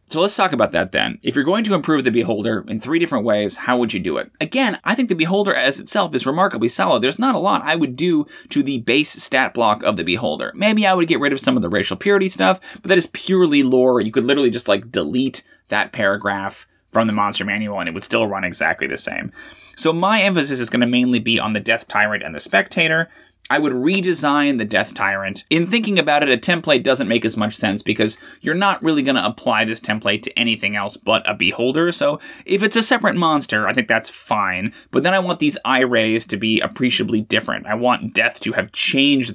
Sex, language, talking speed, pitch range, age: male, English, 240 wpm, 110-185 Hz, 20-39